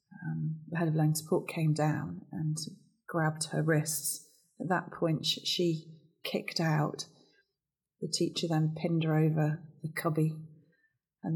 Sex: female